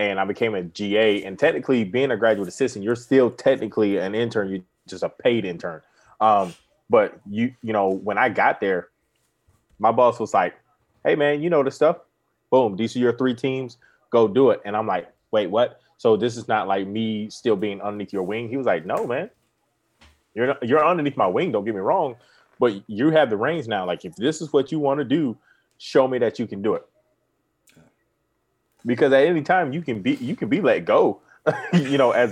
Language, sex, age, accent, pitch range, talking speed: English, male, 20-39, American, 105-135 Hz, 215 wpm